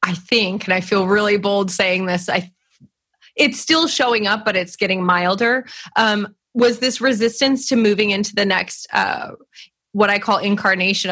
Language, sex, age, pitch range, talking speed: English, female, 20-39, 180-215 Hz, 175 wpm